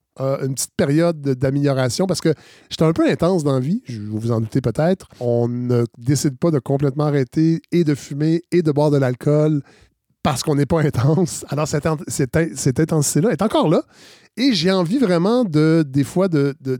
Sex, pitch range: male, 130-170 Hz